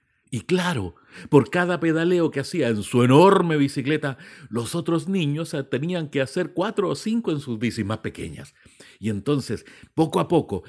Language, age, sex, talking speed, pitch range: Spanish, 50-69, male, 170 wpm, 90-135 Hz